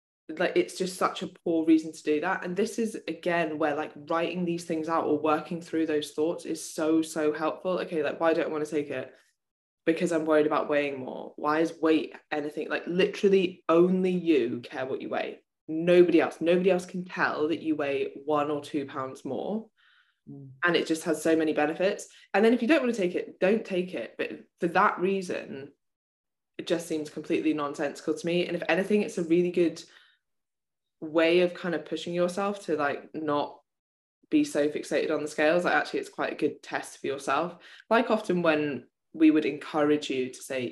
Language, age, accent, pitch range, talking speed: English, 10-29, British, 150-180 Hz, 205 wpm